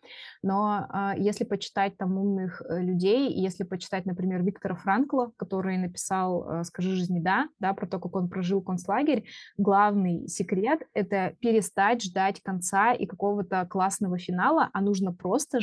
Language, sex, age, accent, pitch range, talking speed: Russian, female, 20-39, native, 185-220 Hz, 145 wpm